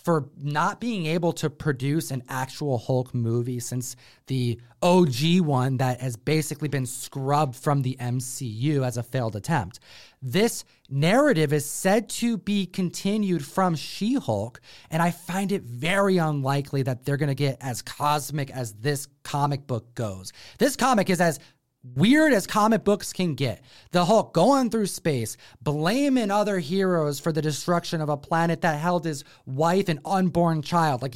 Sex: male